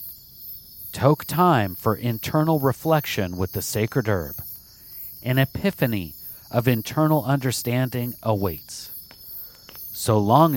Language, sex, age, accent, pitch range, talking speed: English, male, 40-59, American, 105-135 Hz, 95 wpm